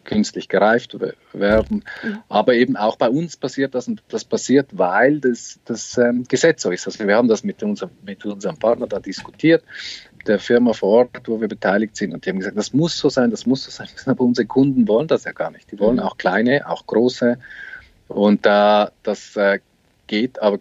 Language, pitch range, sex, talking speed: German, 100-155 Hz, male, 210 wpm